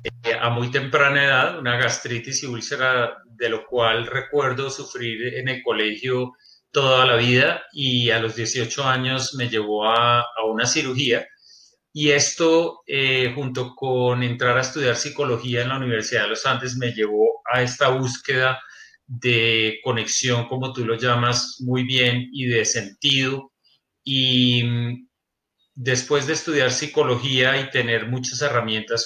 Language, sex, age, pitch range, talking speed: Spanish, male, 30-49, 120-135 Hz, 145 wpm